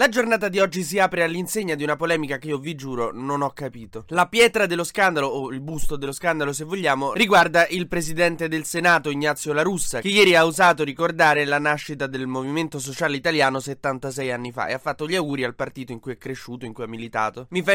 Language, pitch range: Italian, 135-165 Hz